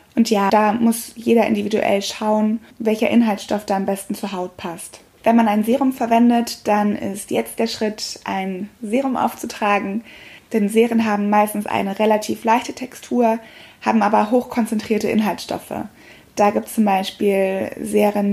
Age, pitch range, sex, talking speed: 20-39, 205-235 Hz, female, 150 wpm